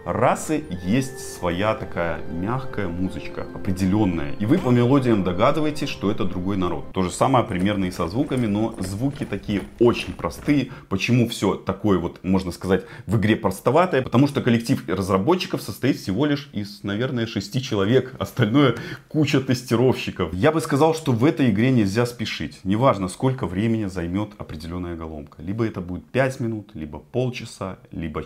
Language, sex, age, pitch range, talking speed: Russian, male, 30-49, 95-125 Hz, 155 wpm